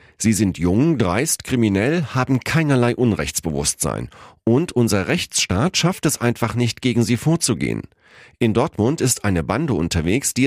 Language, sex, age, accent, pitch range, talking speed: German, male, 40-59, German, 90-130 Hz, 145 wpm